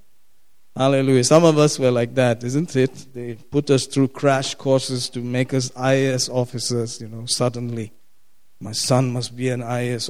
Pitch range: 120-135 Hz